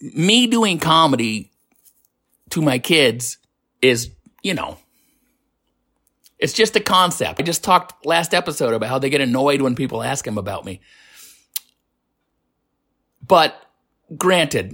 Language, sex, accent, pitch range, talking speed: English, male, American, 110-155 Hz, 125 wpm